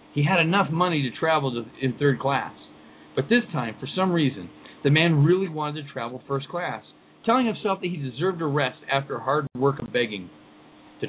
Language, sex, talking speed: English, male, 195 wpm